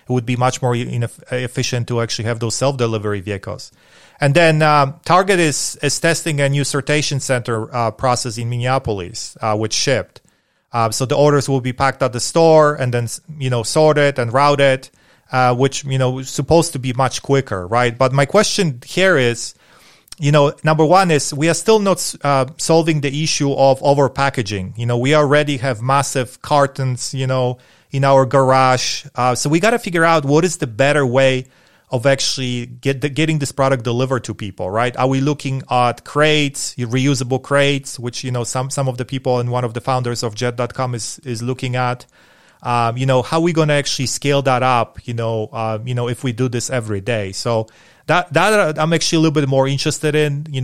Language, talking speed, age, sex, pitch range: English, 205 wpm, 30-49, male, 120-145 Hz